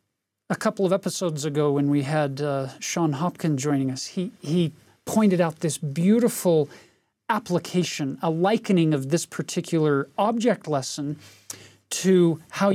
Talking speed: 135 wpm